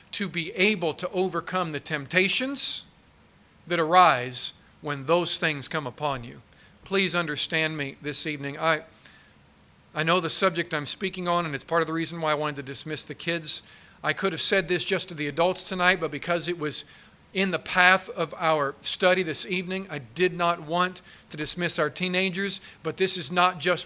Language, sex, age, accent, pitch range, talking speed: English, male, 40-59, American, 150-190 Hz, 190 wpm